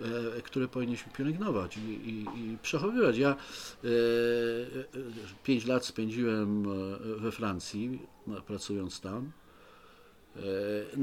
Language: Polish